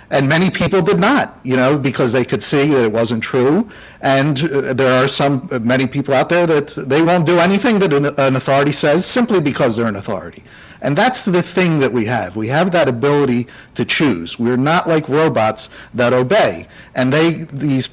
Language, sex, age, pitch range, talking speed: English, male, 50-69, 130-195 Hz, 200 wpm